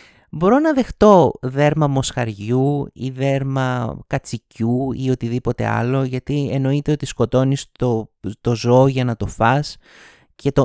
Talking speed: 130 wpm